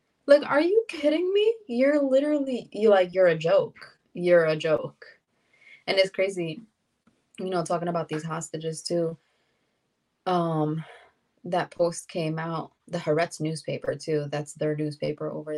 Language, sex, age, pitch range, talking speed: English, female, 20-39, 155-180 Hz, 145 wpm